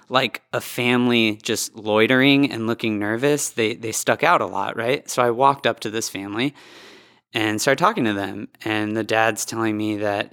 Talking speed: 190 wpm